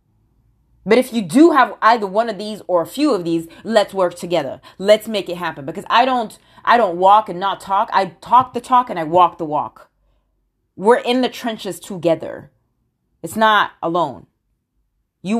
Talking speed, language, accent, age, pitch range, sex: 185 wpm, English, American, 30-49, 160-235 Hz, female